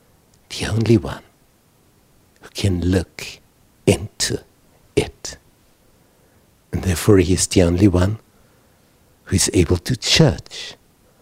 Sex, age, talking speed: male, 60-79, 105 wpm